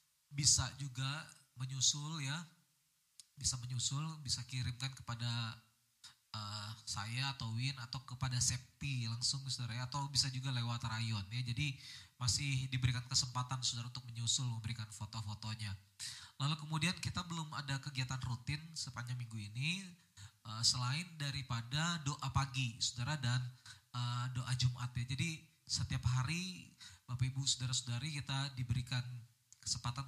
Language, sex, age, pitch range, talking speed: Indonesian, male, 20-39, 115-135 Hz, 125 wpm